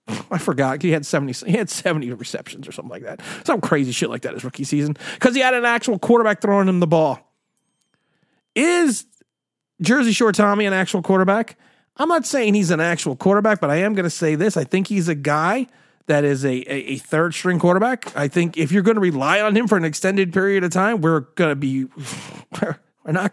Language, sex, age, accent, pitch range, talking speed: English, male, 40-59, American, 160-215 Hz, 225 wpm